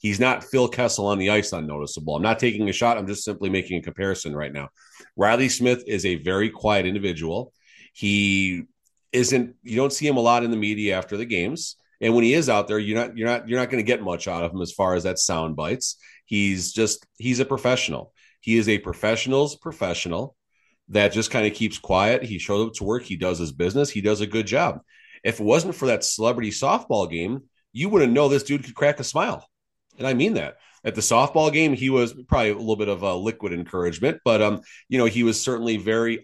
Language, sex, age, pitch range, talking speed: English, male, 30-49, 100-120 Hz, 230 wpm